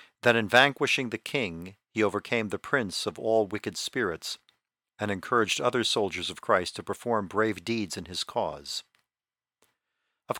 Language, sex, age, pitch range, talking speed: English, male, 50-69, 105-125 Hz, 155 wpm